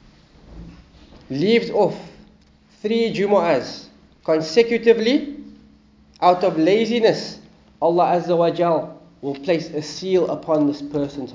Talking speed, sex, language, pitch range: 100 wpm, male, English, 155-215 Hz